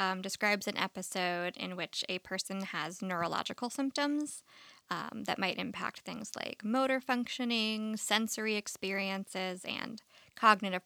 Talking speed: 125 wpm